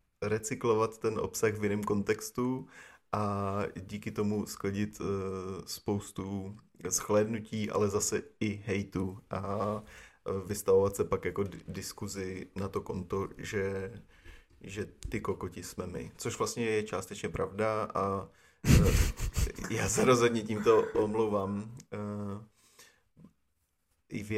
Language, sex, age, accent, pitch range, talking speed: Czech, male, 20-39, native, 95-105 Hz, 120 wpm